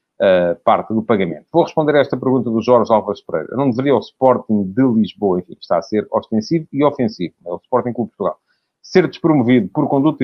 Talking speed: 210 wpm